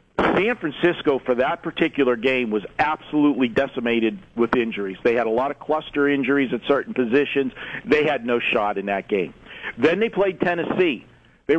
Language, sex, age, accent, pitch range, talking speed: English, male, 50-69, American, 125-165 Hz, 170 wpm